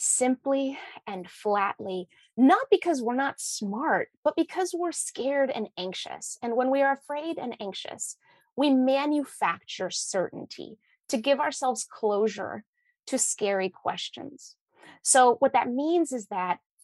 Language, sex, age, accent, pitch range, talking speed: English, female, 30-49, American, 215-295 Hz, 130 wpm